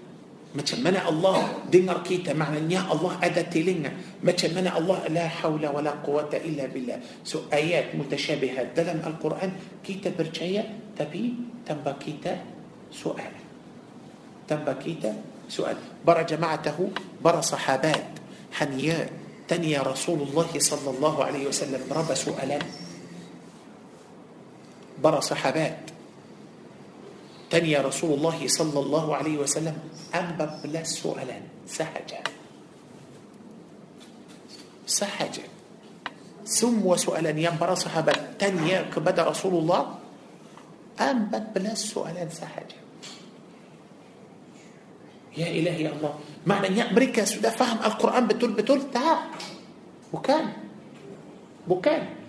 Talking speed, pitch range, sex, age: 95 wpm, 155-215 Hz, male, 50-69